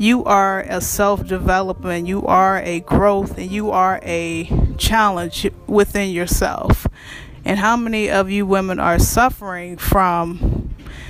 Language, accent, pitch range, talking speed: English, American, 180-205 Hz, 135 wpm